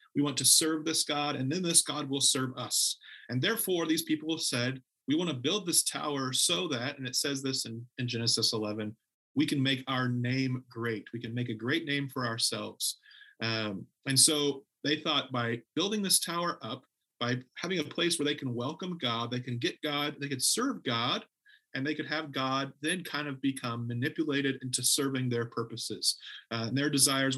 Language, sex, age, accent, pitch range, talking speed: English, male, 40-59, American, 125-155 Hz, 205 wpm